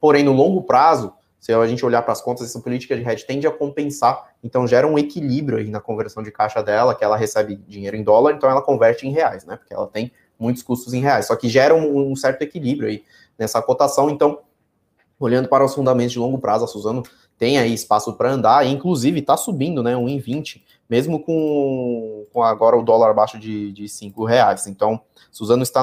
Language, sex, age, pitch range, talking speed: Portuguese, male, 20-39, 110-145 Hz, 215 wpm